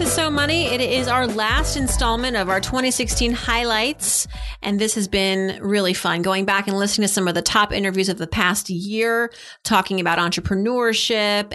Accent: American